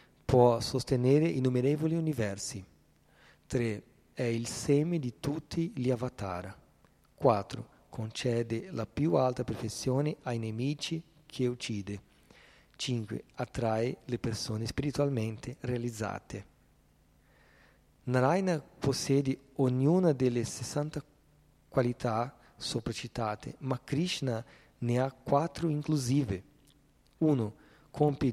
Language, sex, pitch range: Italian, male, 115-145 Hz